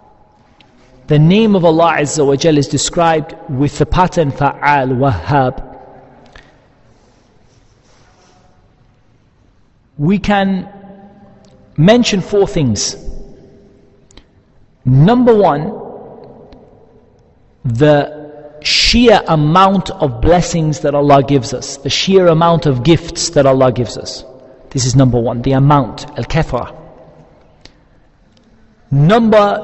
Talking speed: 90 wpm